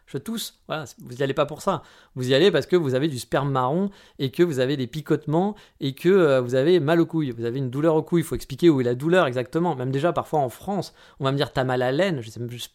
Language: French